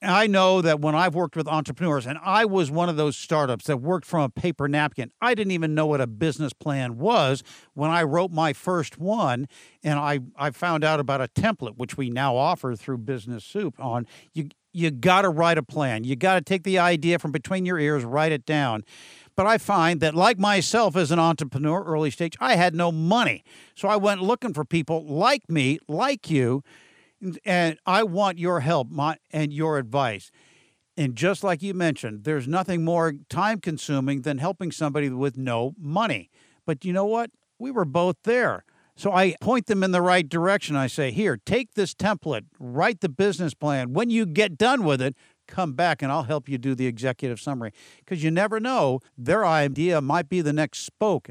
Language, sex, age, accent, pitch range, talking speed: English, male, 50-69, American, 140-185 Hz, 200 wpm